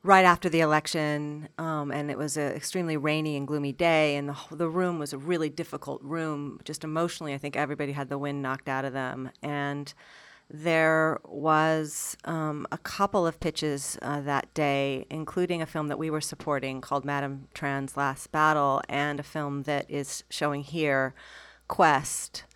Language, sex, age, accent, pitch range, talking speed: English, female, 40-59, American, 145-175 Hz, 175 wpm